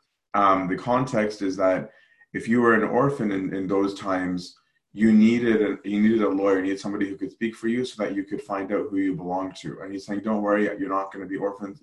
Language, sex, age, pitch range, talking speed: English, male, 20-39, 95-115 Hz, 255 wpm